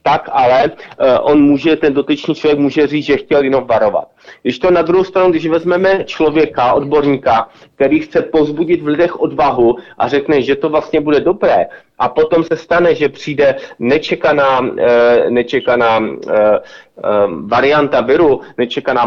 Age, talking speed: 30-49, 155 wpm